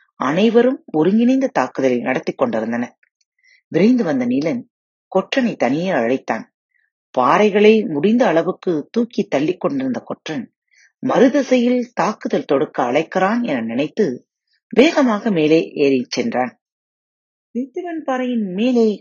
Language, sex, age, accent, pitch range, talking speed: Tamil, female, 30-49, native, 170-265 Hz, 95 wpm